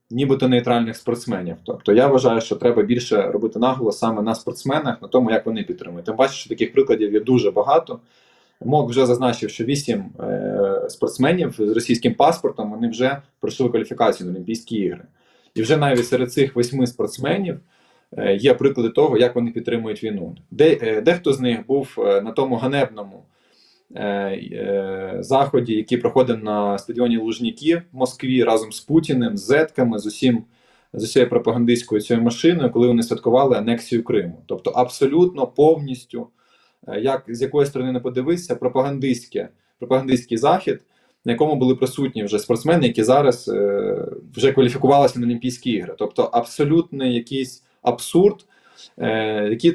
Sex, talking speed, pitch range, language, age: male, 145 wpm, 115-140 Hz, Ukrainian, 20-39